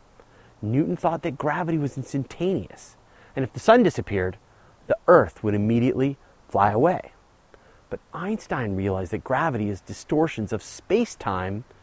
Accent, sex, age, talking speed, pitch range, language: American, male, 30-49, 130 wpm, 100-150 Hz, English